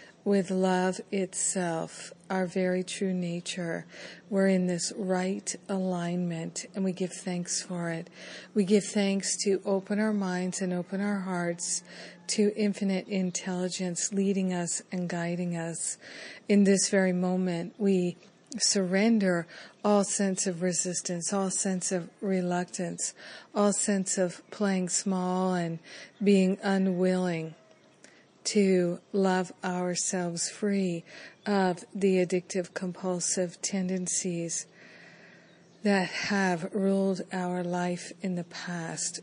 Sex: female